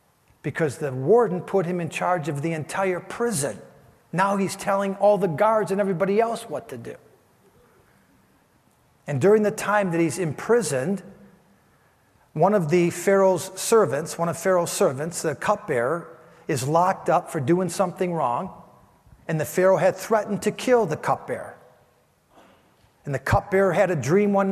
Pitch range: 165-205 Hz